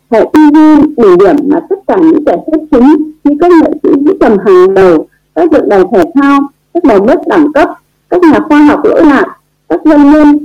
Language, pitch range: Vietnamese, 260-335 Hz